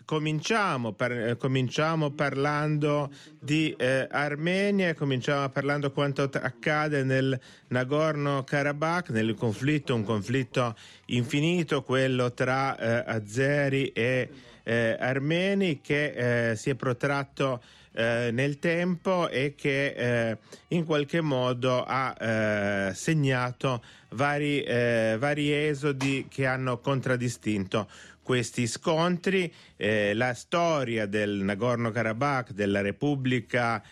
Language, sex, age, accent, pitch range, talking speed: Italian, male, 30-49, native, 120-145 Hz, 105 wpm